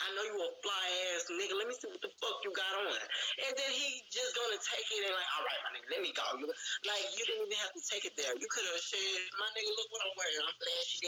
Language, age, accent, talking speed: English, 20-39, American, 280 wpm